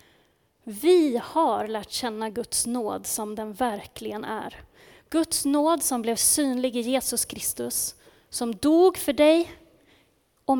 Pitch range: 240-325 Hz